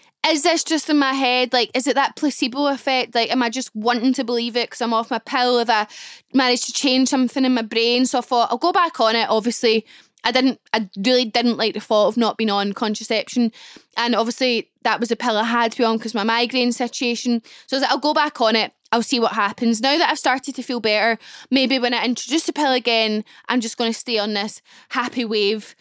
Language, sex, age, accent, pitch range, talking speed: English, female, 10-29, British, 225-275 Hz, 250 wpm